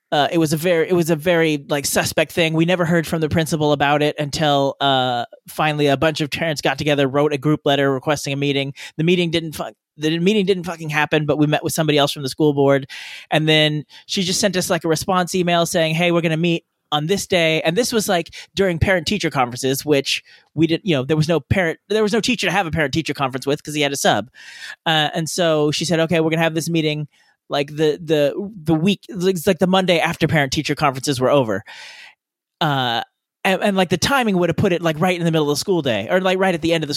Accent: American